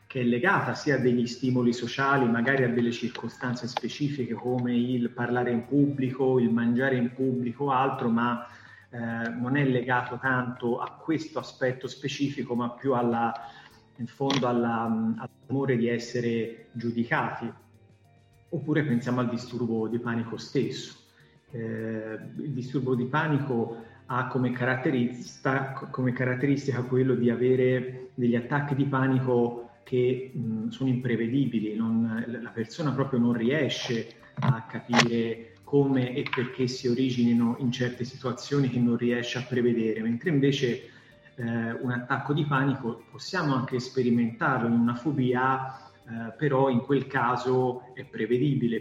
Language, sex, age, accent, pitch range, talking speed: Italian, male, 30-49, native, 120-130 Hz, 135 wpm